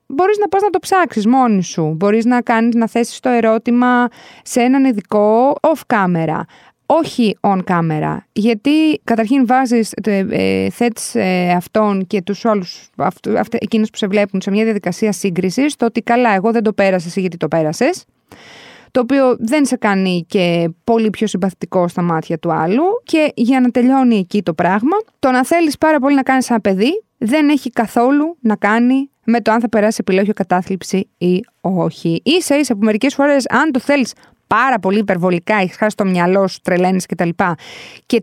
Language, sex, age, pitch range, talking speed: Greek, female, 20-39, 185-250 Hz, 180 wpm